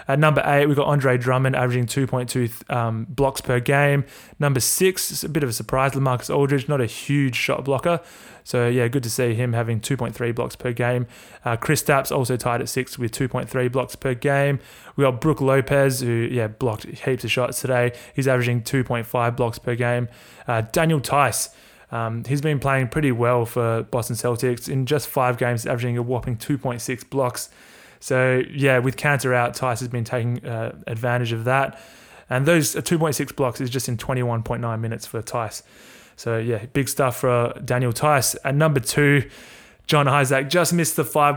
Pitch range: 120-140 Hz